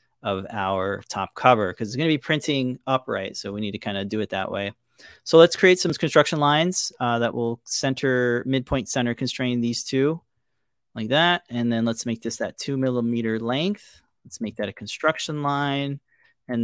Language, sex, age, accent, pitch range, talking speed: English, male, 30-49, American, 110-135 Hz, 195 wpm